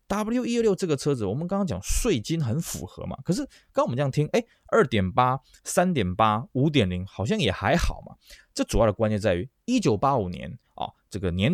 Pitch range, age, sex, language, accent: 95-145 Hz, 20-39, male, Chinese, native